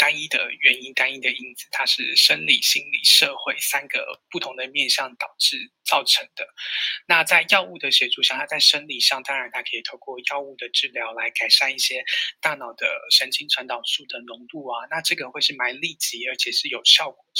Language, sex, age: Chinese, male, 20-39